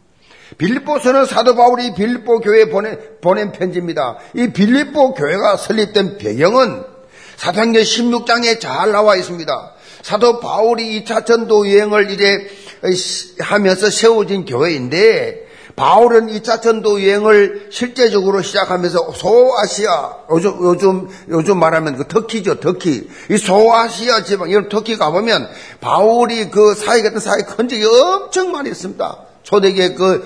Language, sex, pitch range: Korean, male, 195-250 Hz